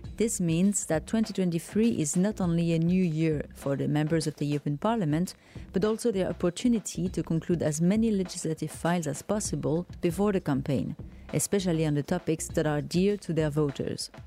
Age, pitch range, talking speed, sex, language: 30-49, 155-195 Hz, 175 wpm, female, English